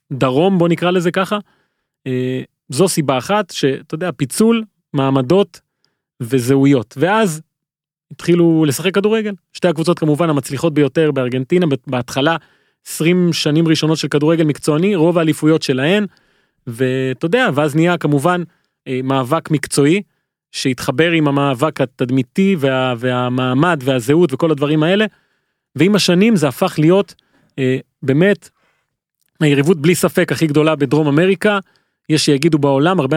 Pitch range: 140-180 Hz